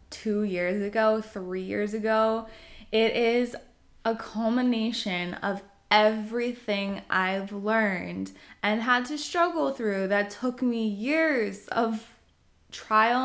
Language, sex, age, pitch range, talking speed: English, female, 20-39, 195-235 Hz, 115 wpm